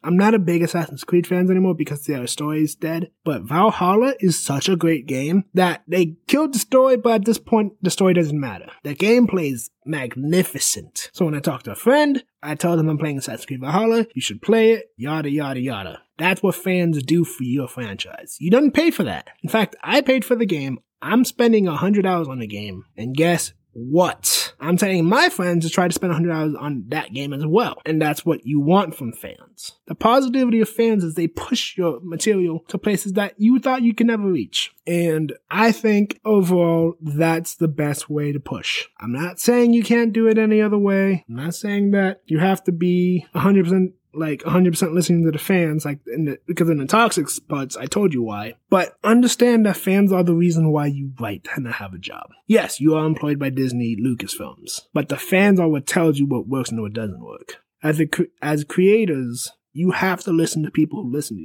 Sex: male